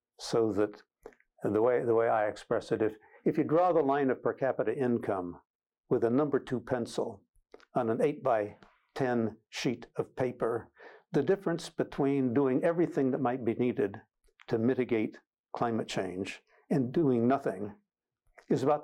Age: 60-79